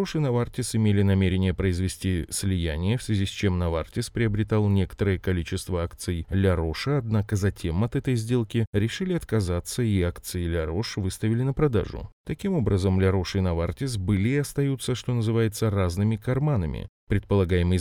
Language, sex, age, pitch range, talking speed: Russian, male, 30-49, 95-125 Hz, 145 wpm